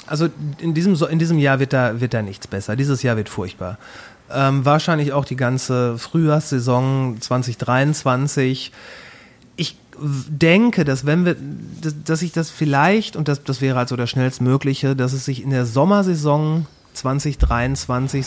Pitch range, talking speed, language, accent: 125-155 Hz, 150 wpm, German, German